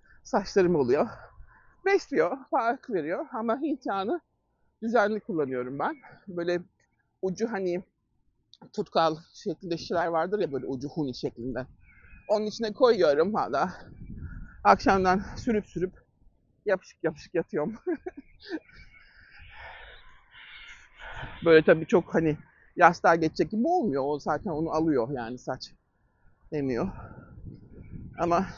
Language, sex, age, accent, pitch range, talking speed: Turkish, male, 60-79, native, 155-225 Hz, 100 wpm